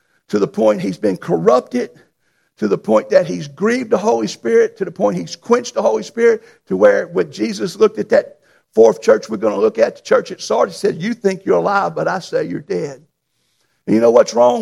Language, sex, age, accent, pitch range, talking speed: English, male, 50-69, American, 205-260 Hz, 230 wpm